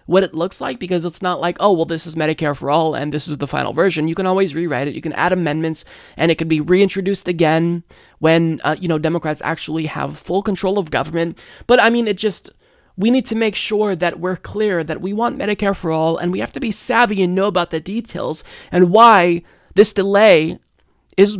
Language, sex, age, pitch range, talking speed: English, male, 20-39, 160-190 Hz, 230 wpm